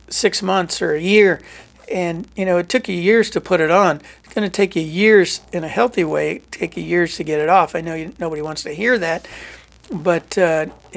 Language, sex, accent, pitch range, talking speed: English, male, American, 160-190 Hz, 235 wpm